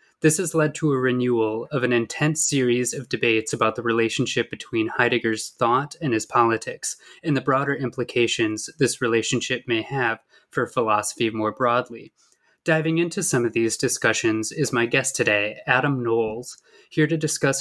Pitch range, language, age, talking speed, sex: 115-135 Hz, English, 20-39, 165 wpm, male